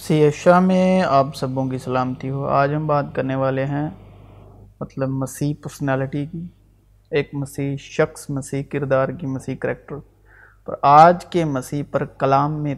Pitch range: 100-165 Hz